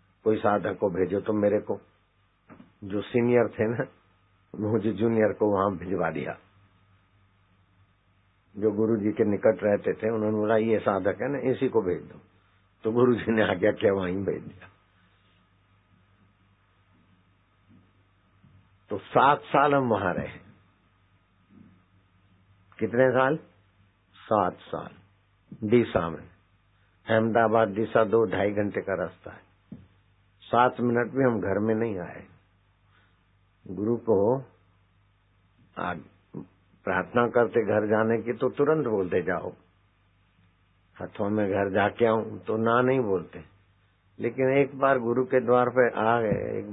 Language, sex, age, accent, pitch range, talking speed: Hindi, male, 60-79, native, 95-115 Hz, 130 wpm